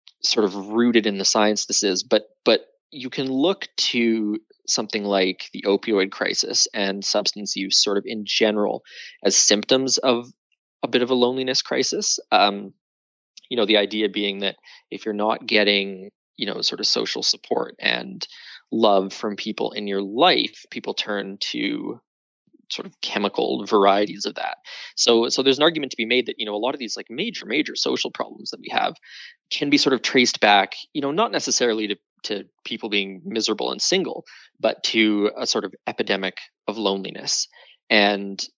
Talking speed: 180 wpm